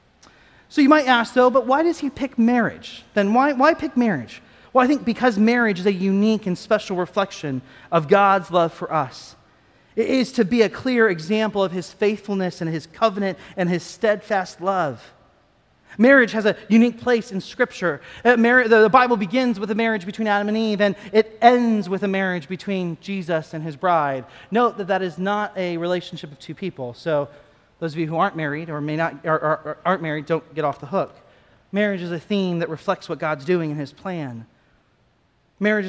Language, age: English, 30-49